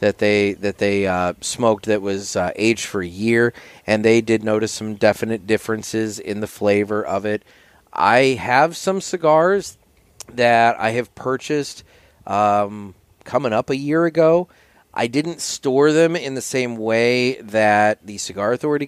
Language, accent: English, American